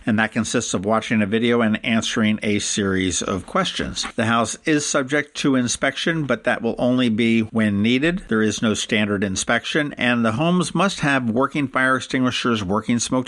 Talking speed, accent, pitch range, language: 185 wpm, American, 105-130 Hz, English